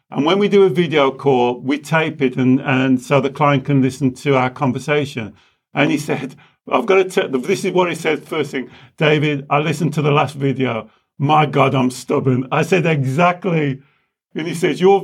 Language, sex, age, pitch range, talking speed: English, male, 50-69, 145-190 Hz, 210 wpm